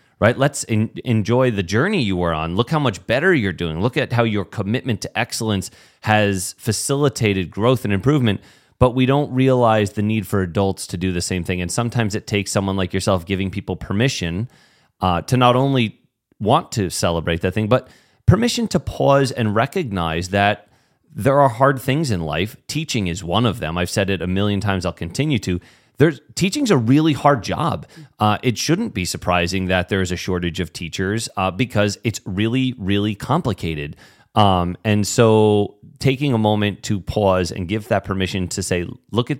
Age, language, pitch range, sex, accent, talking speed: 30-49, English, 95-125 Hz, male, American, 190 wpm